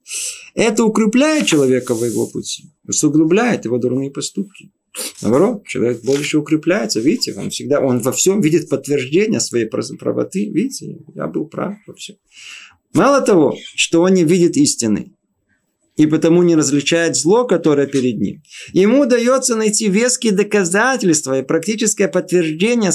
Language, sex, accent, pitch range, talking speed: Russian, male, native, 130-190 Hz, 140 wpm